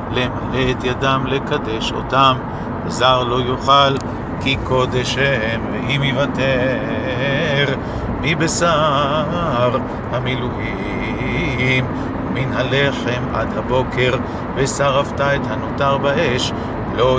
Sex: male